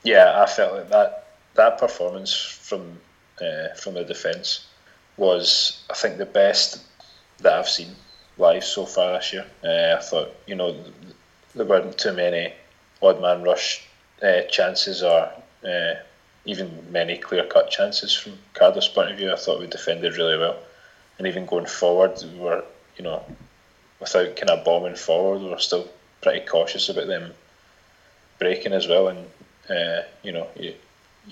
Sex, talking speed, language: male, 160 wpm, English